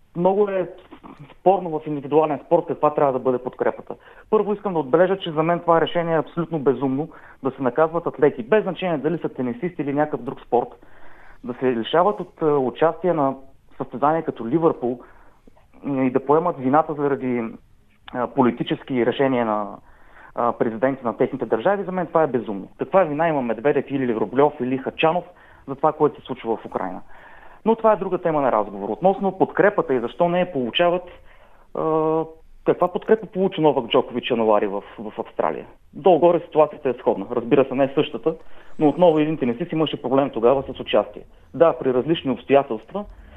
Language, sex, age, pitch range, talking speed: Bulgarian, male, 30-49, 130-170 Hz, 175 wpm